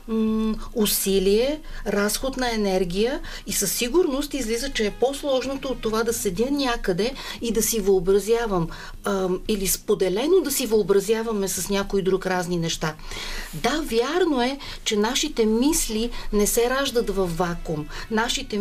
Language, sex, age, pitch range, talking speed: Bulgarian, female, 40-59, 200-240 Hz, 135 wpm